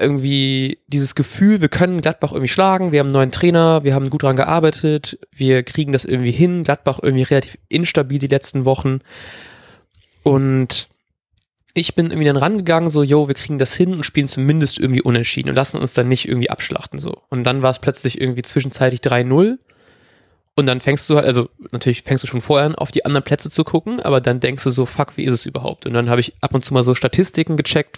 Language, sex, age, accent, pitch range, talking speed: German, male, 20-39, German, 130-155 Hz, 220 wpm